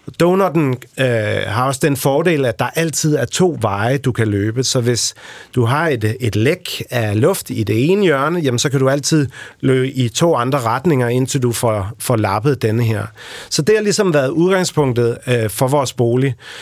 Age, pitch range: 30-49, 120-155 Hz